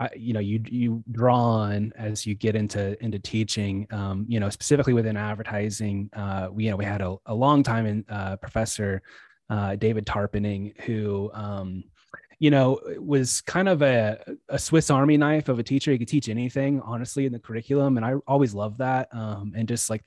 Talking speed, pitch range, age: 200 wpm, 110-135 Hz, 20-39